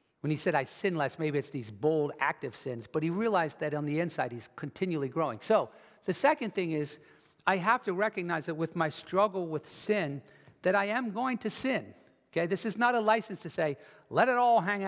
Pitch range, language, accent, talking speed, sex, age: 155-215 Hz, English, American, 220 wpm, male, 60-79